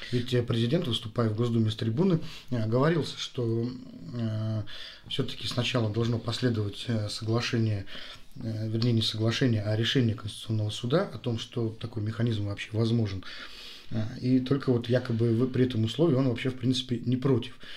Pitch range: 110-125 Hz